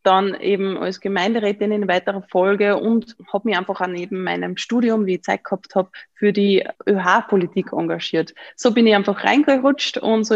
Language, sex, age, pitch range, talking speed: German, female, 20-39, 190-225 Hz, 180 wpm